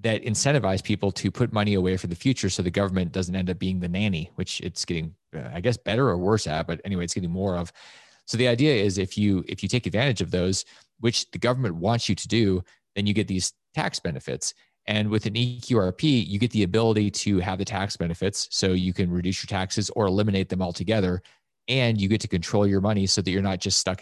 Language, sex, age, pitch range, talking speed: English, male, 30-49, 90-110 Hz, 235 wpm